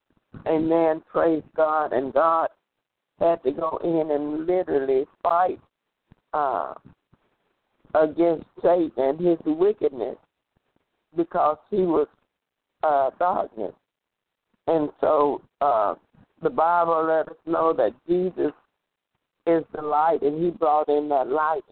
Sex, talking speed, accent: male, 120 wpm, American